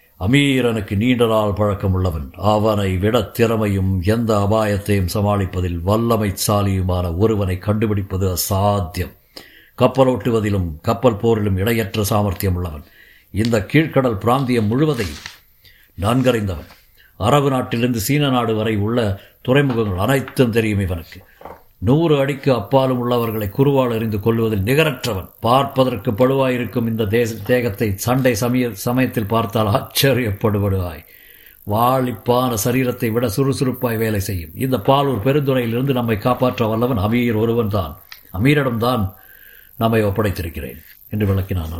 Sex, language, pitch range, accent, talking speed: male, Tamil, 100-125 Hz, native, 105 wpm